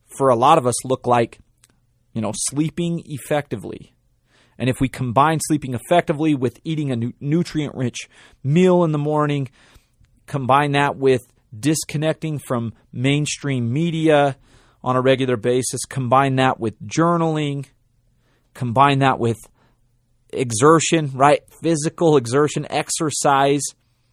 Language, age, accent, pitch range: English, 30-49, American, 120-150 Hz